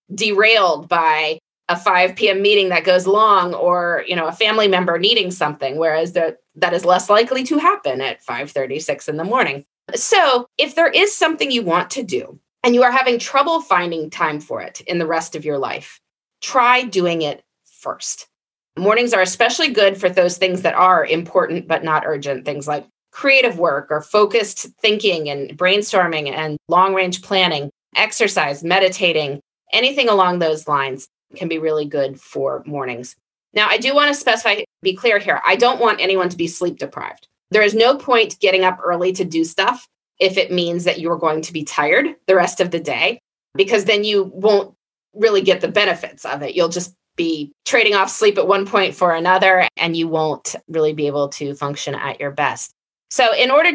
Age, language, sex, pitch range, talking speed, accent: 30-49, English, female, 160-215 Hz, 190 wpm, American